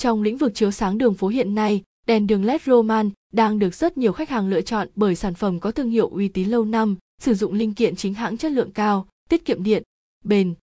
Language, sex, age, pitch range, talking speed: Vietnamese, female, 20-39, 195-235 Hz, 250 wpm